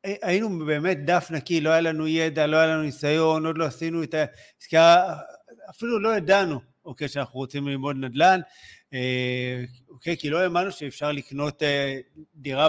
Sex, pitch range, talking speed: male, 130-175 Hz, 150 wpm